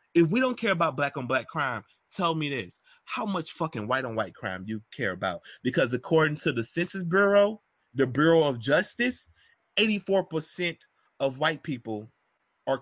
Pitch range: 120-165 Hz